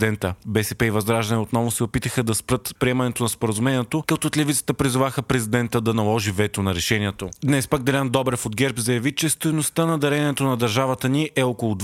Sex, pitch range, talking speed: male, 115-140 Hz, 195 wpm